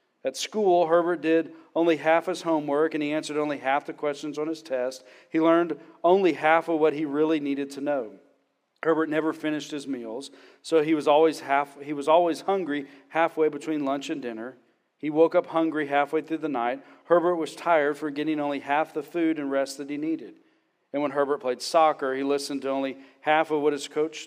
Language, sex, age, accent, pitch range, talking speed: English, male, 40-59, American, 135-155 Hz, 210 wpm